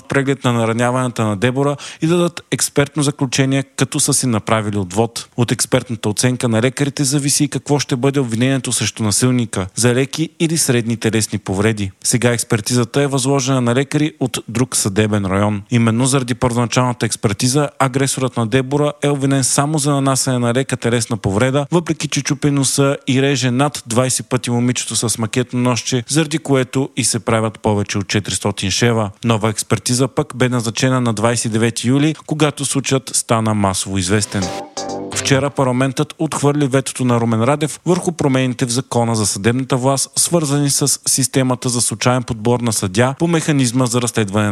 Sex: male